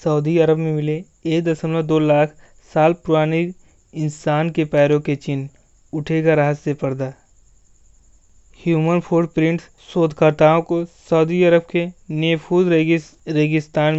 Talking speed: 115 wpm